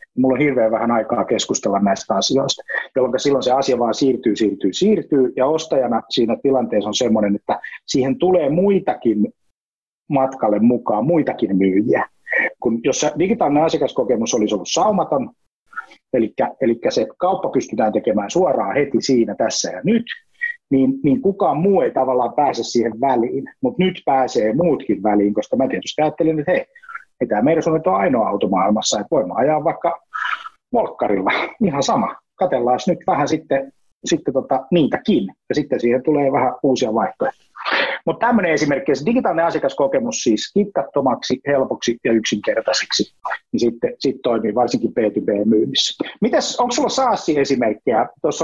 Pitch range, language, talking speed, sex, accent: 125-205 Hz, Finnish, 145 wpm, male, native